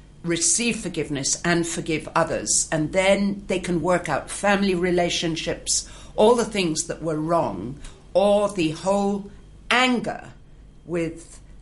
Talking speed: 125 wpm